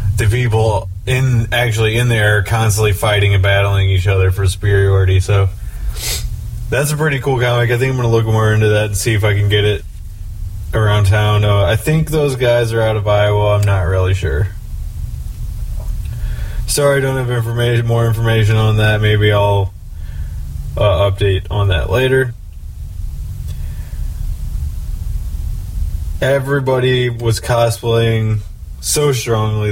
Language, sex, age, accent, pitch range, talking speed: English, male, 20-39, American, 95-115 Hz, 145 wpm